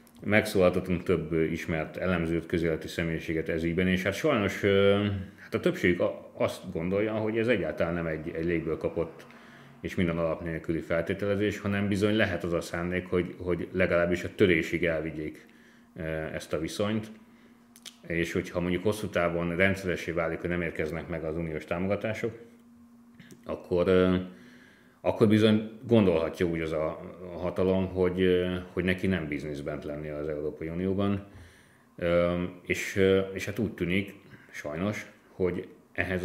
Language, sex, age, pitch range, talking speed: Hungarian, male, 30-49, 80-100 Hz, 135 wpm